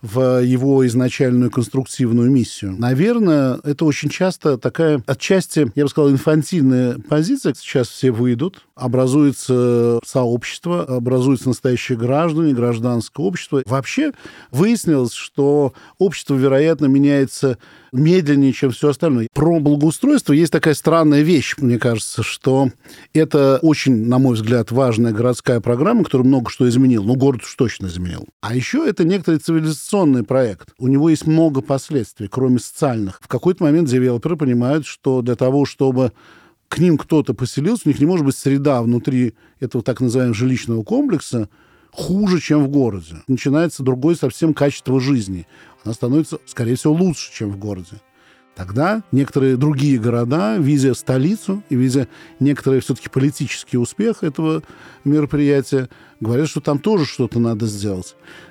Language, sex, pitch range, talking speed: Russian, male, 125-155 Hz, 140 wpm